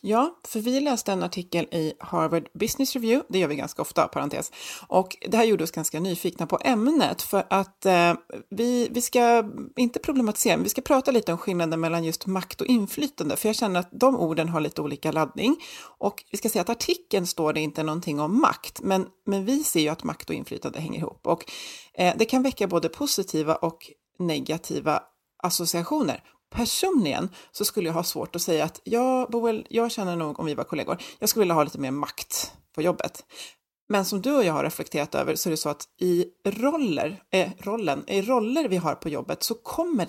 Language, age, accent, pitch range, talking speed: Swedish, 30-49, native, 165-235 Hz, 205 wpm